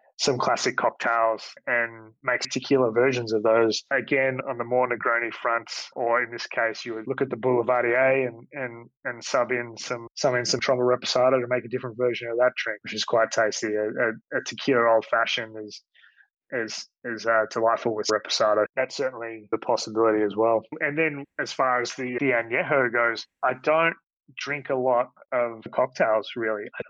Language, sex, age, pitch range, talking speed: English, male, 20-39, 115-125 Hz, 190 wpm